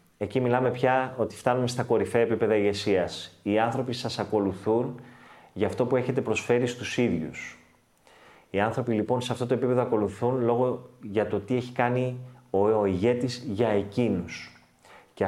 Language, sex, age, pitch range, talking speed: Greek, male, 30-49, 100-125 Hz, 155 wpm